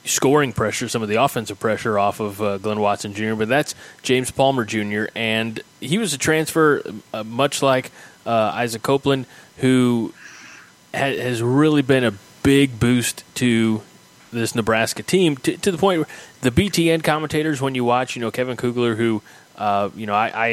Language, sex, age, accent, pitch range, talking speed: English, male, 20-39, American, 110-135 Hz, 180 wpm